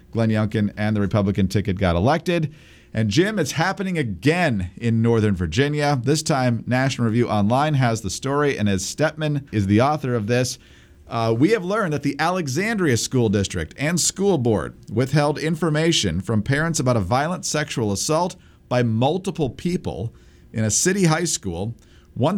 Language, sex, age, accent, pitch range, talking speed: English, male, 50-69, American, 105-150 Hz, 165 wpm